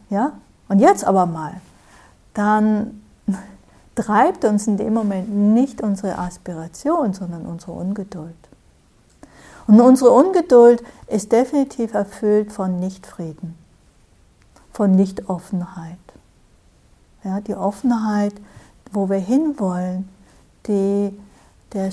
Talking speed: 90 wpm